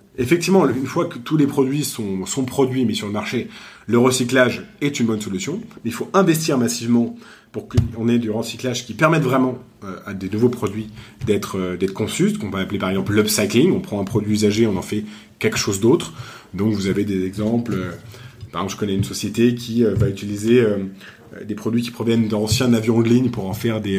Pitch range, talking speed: 105-125 Hz, 220 wpm